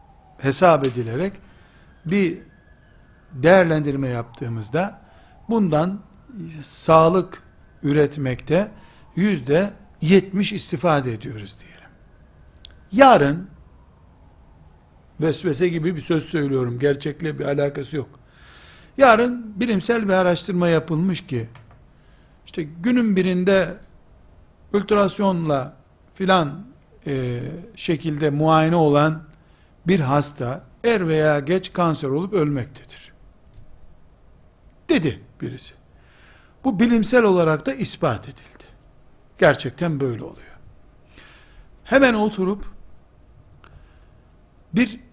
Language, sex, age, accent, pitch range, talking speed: Turkish, male, 60-79, native, 135-185 Hz, 80 wpm